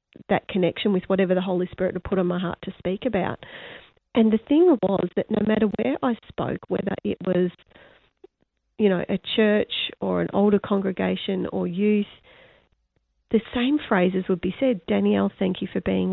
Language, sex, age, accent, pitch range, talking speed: English, female, 40-59, Australian, 190-225 Hz, 180 wpm